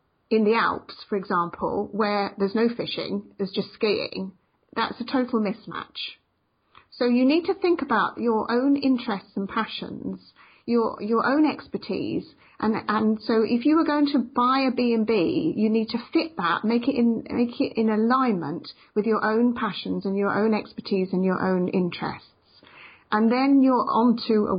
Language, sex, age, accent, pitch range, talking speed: English, female, 40-59, British, 195-245 Hz, 175 wpm